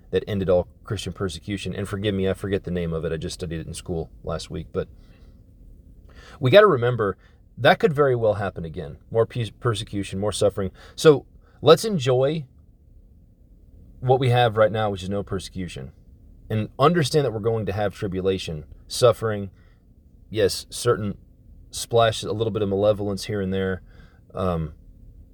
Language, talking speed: English, 165 wpm